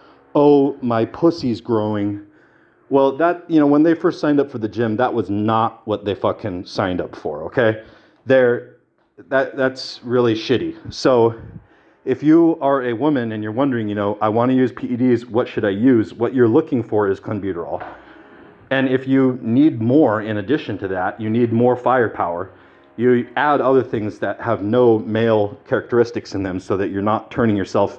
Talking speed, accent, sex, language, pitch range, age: 185 wpm, American, male, English, 110-135 Hz, 40-59